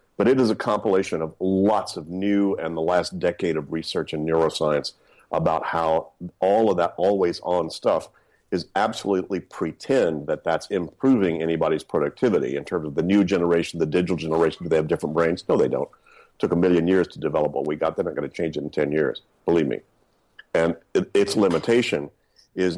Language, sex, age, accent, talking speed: English, male, 50-69, American, 200 wpm